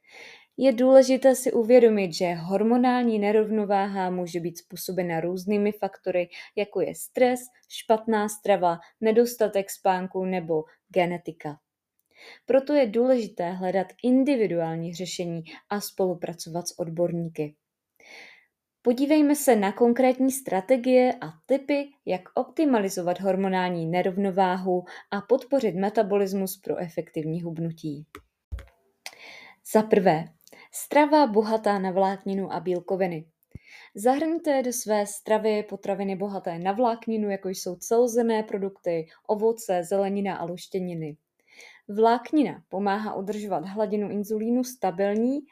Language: Czech